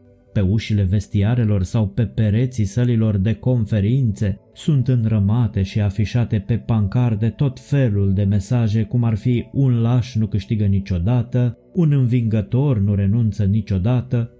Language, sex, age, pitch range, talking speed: Romanian, male, 20-39, 105-125 Hz, 140 wpm